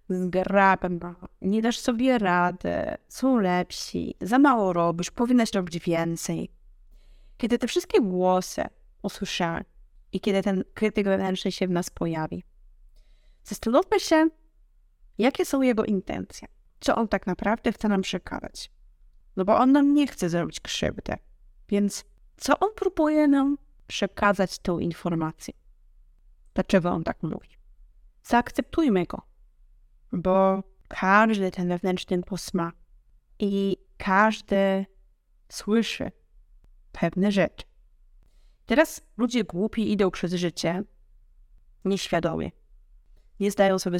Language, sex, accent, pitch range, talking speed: Polish, female, native, 180-240 Hz, 110 wpm